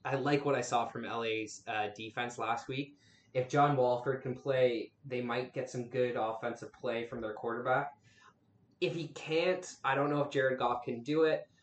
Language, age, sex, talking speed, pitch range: English, 20-39, male, 195 wpm, 120-135 Hz